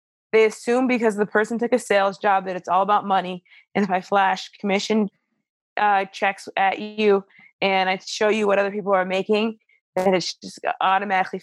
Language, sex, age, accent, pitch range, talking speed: English, female, 20-39, American, 195-230 Hz, 190 wpm